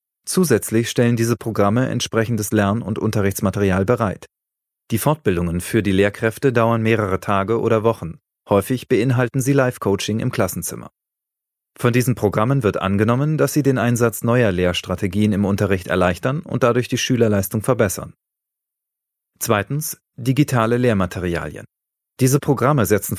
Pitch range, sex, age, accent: 100-125 Hz, male, 30-49, German